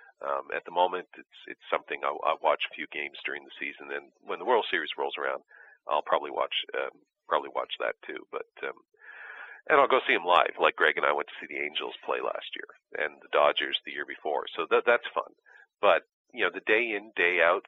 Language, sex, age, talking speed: English, male, 40-59, 235 wpm